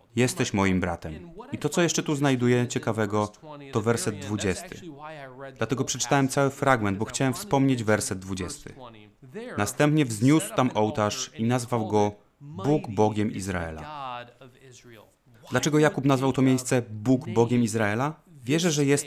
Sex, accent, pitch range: male, native, 110-140 Hz